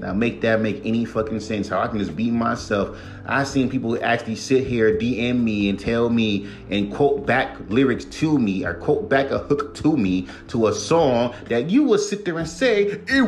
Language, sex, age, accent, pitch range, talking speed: English, male, 30-49, American, 110-145 Hz, 215 wpm